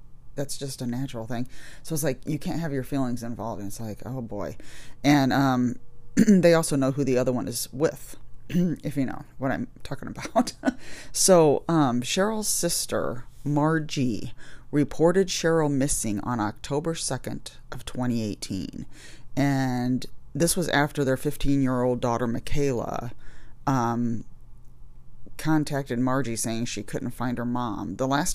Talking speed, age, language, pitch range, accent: 150 wpm, 30-49, English, 120-150 Hz, American